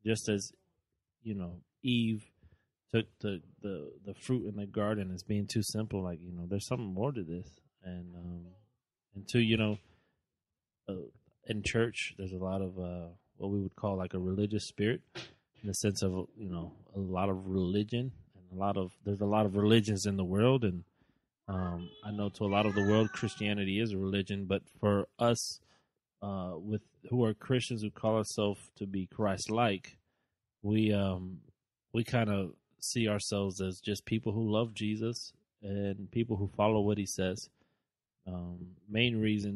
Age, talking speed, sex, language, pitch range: 20-39, 180 wpm, male, English, 95-110 Hz